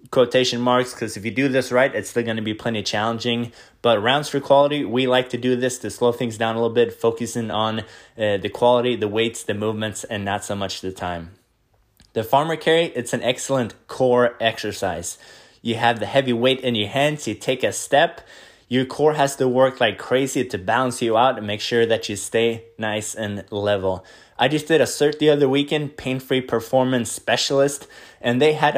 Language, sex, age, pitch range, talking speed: English, male, 20-39, 110-130 Hz, 210 wpm